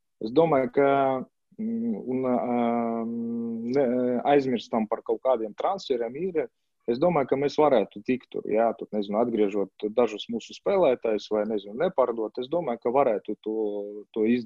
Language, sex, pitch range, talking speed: English, male, 110-145 Hz, 130 wpm